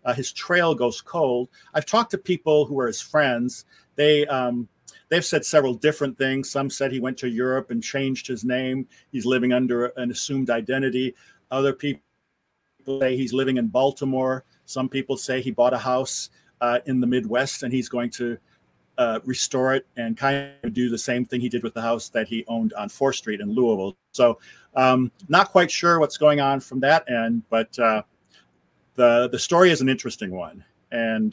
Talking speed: 195 wpm